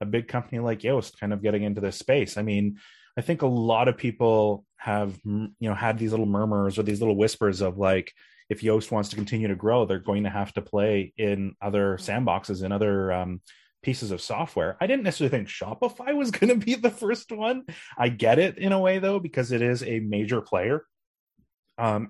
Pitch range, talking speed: 105-135 Hz, 215 wpm